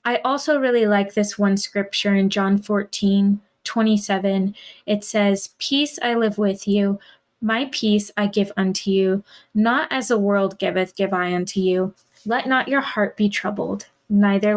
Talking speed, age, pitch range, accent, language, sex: 165 wpm, 20-39, 200-235 Hz, American, English, female